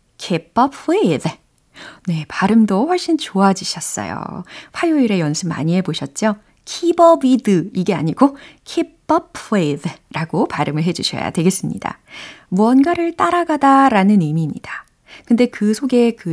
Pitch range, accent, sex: 180-280 Hz, native, female